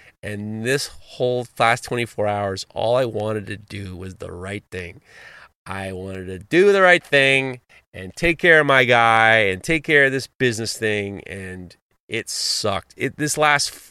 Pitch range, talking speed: 115-170 Hz, 175 wpm